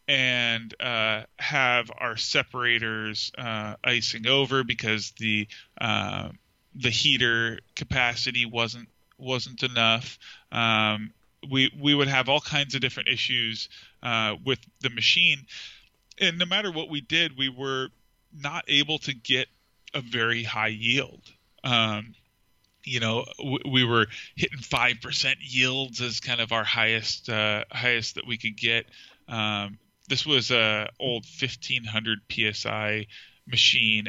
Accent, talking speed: American, 130 wpm